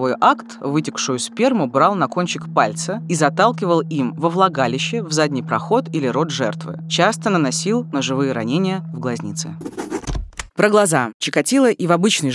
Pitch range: 130-170 Hz